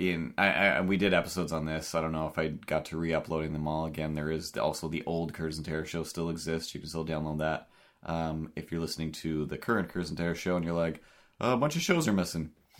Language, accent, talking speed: English, American, 265 wpm